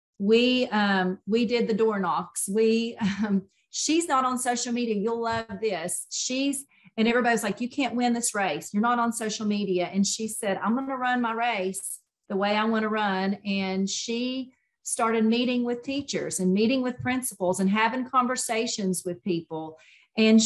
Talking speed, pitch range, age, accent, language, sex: 180 wpm, 205-250 Hz, 40-59, American, English, female